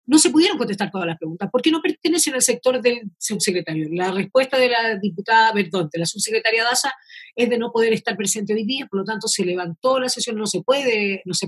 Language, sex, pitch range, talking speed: Spanish, female, 205-260 Hz, 220 wpm